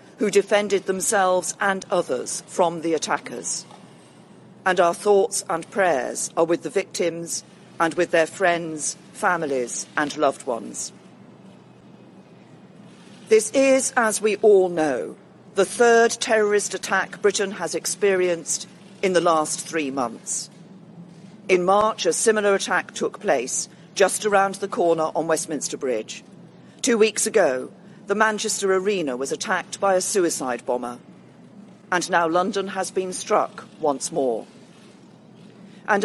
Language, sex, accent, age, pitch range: Chinese, female, British, 40-59, 175-205 Hz